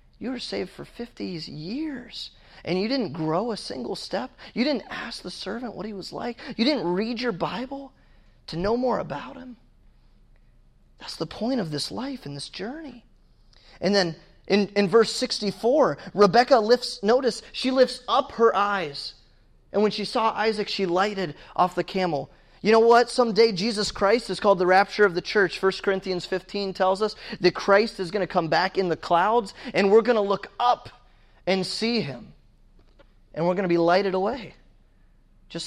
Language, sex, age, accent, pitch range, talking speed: English, male, 30-49, American, 160-225 Hz, 185 wpm